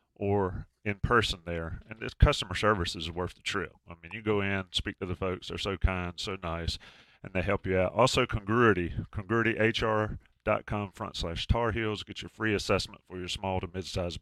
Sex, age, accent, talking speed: male, 40-59, American, 200 wpm